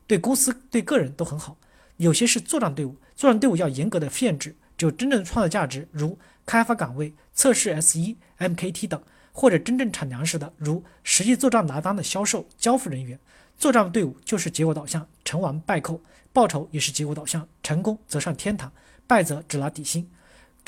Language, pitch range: Chinese, 155-225 Hz